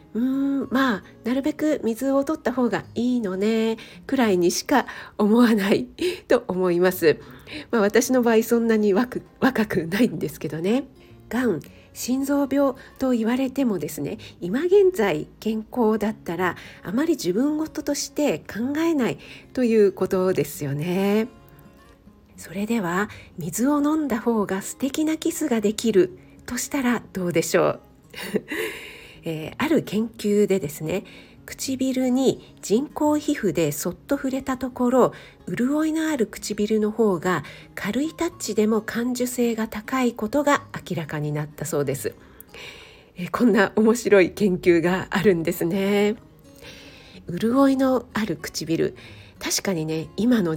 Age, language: 50-69, Japanese